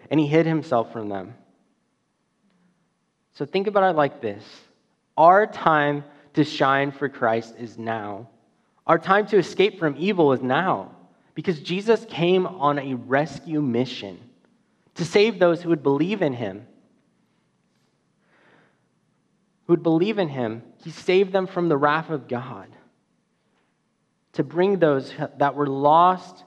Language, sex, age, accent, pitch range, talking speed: English, male, 20-39, American, 135-180 Hz, 140 wpm